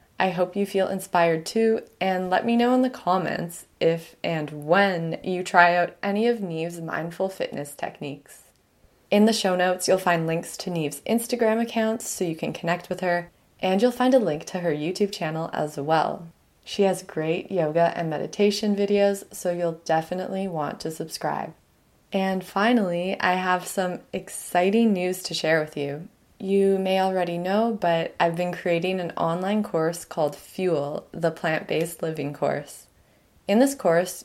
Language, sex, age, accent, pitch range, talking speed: English, female, 20-39, American, 165-195 Hz, 170 wpm